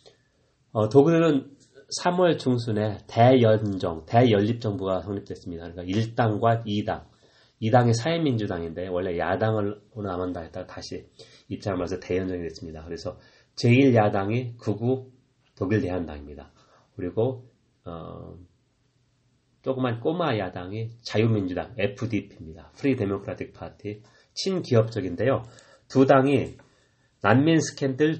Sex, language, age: male, Korean, 30-49